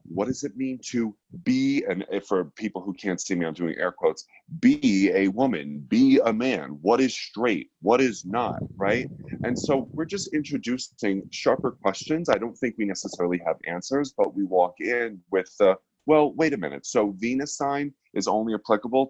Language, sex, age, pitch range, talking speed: English, male, 30-49, 95-135 Hz, 190 wpm